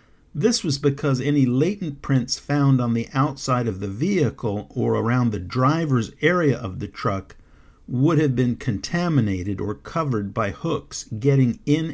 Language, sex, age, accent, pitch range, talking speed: English, male, 50-69, American, 105-145 Hz, 155 wpm